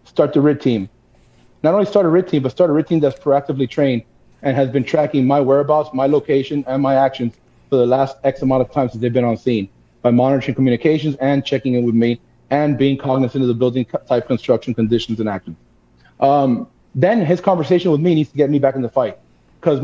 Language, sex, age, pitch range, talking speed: English, male, 30-49, 120-150 Hz, 225 wpm